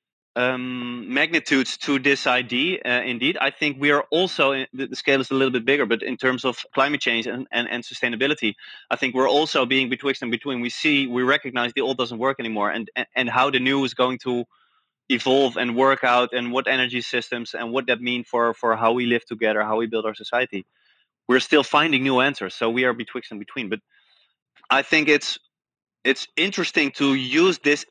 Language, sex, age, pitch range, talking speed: English, male, 20-39, 110-135 Hz, 210 wpm